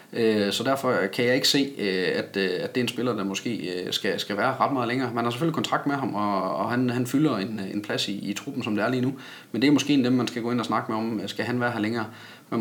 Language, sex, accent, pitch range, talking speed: Danish, male, native, 105-125 Hz, 265 wpm